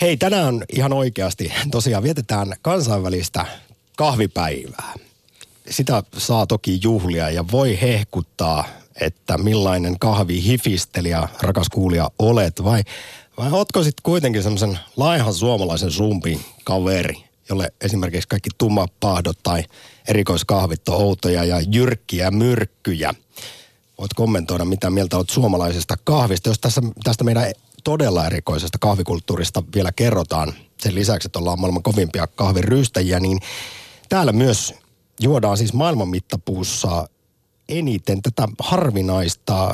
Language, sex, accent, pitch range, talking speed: Finnish, male, native, 90-120 Hz, 110 wpm